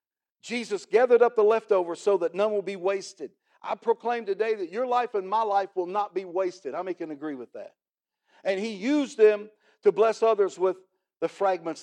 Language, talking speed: English, 205 wpm